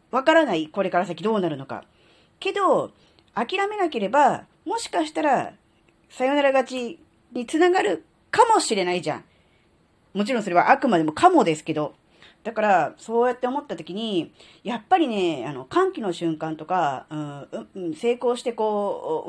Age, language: 40-59, Japanese